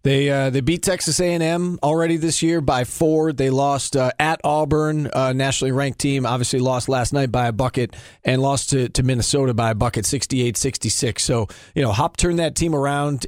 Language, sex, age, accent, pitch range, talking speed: English, male, 40-59, American, 130-155 Hz, 195 wpm